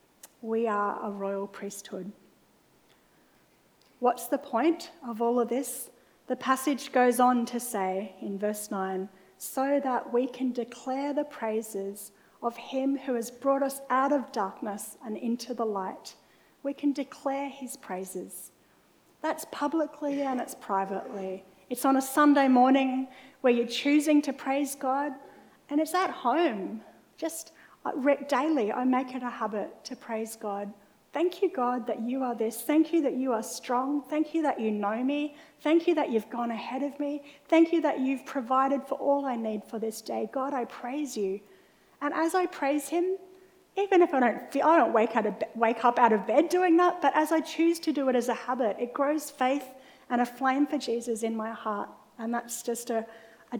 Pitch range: 225-285 Hz